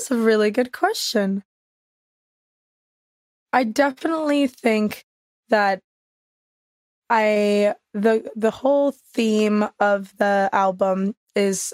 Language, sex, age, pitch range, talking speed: English, female, 20-39, 200-225 Hz, 90 wpm